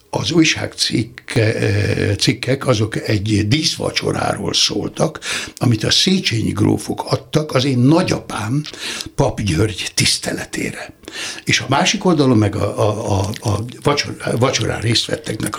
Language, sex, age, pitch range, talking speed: Hungarian, male, 60-79, 105-145 Hz, 120 wpm